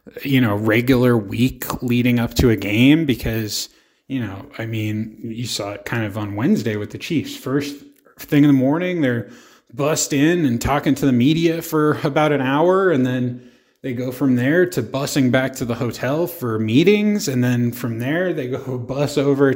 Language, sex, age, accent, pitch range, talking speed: English, male, 20-39, American, 120-140 Hz, 195 wpm